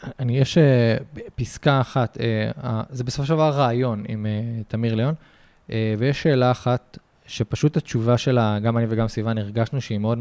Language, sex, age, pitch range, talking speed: Hebrew, male, 20-39, 110-130 Hz, 140 wpm